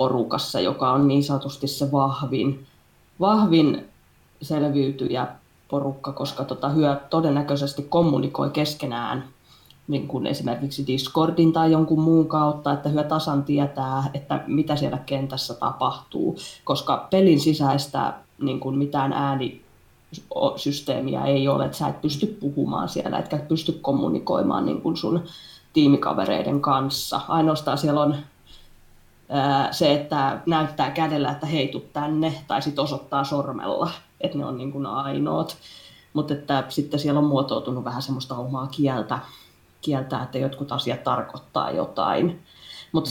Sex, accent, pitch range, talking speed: female, native, 140-155 Hz, 130 wpm